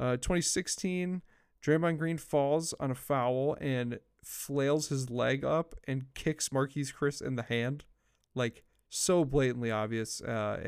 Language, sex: English, male